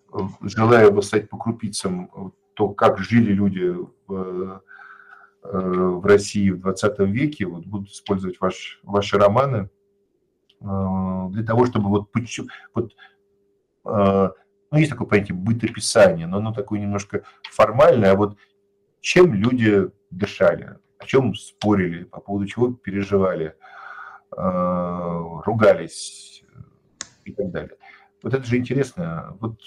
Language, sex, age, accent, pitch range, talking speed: Russian, male, 50-69, native, 95-125 Hz, 115 wpm